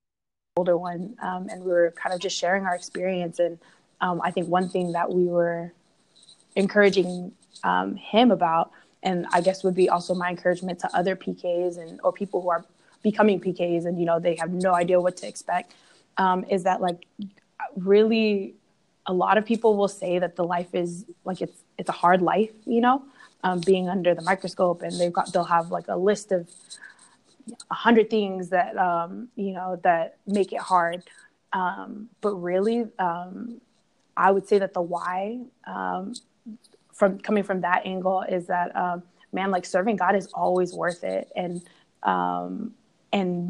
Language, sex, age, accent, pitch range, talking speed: English, female, 20-39, American, 175-200 Hz, 180 wpm